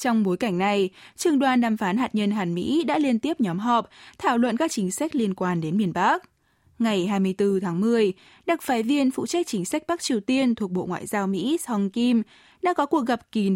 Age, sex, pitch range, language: 10-29, female, 190-275 Hz, Vietnamese